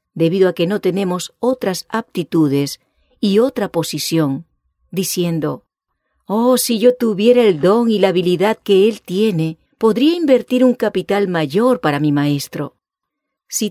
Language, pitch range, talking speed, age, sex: English, 160-240 Hz, 140 wpm, 40-59, female